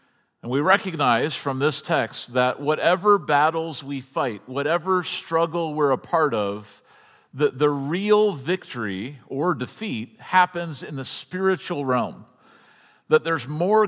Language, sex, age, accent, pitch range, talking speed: English, male, 50-69, American, 135-180 Hz, 135 wpm